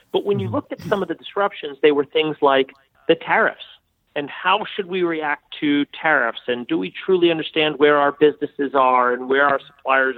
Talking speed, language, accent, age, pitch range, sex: 205 wpm, English, American, 40-59, 130-175 Hz, male